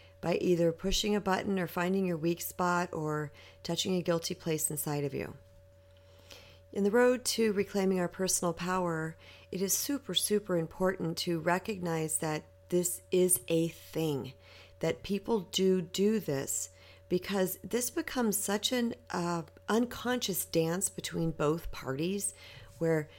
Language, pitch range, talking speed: English, 160-195 Hz, 140 wpm